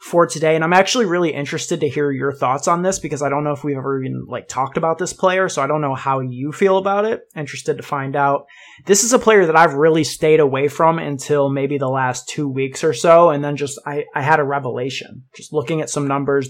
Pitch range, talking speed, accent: 135-160 Hz, 255 wpm, American